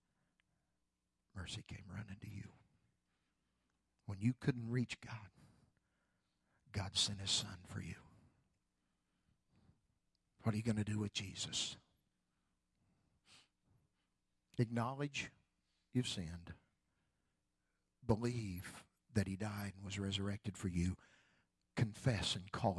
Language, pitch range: English, 90-120 Hz